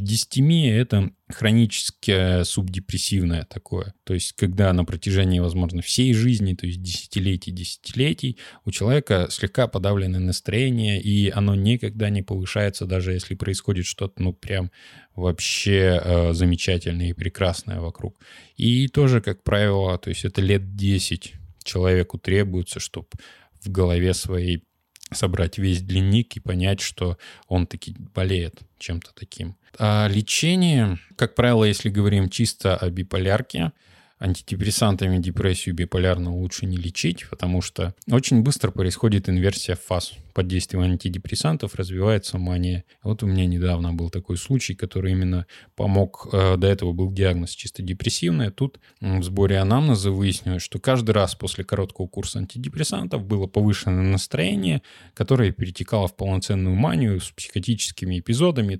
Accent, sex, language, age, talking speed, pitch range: native, male, Russian, 20-39, 135 wpm, 90-110 Hz